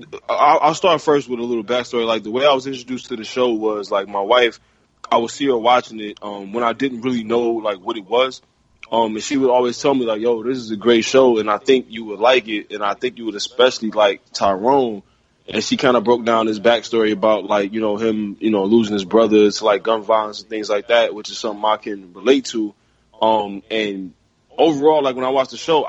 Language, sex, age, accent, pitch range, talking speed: English, male, 20-39, American, 105-125 Hz, 245 wpm